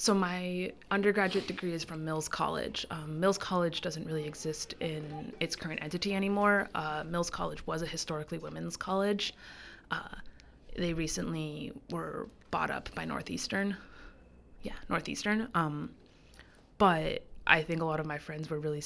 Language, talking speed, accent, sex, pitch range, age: English, 155 wpm, American, female, 160-195 Hz, 20-39